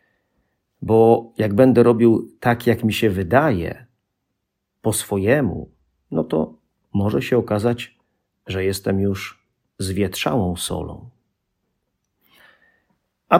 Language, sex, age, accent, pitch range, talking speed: Polish, male, 40-59, native, 100-120 Hz, 100 wpm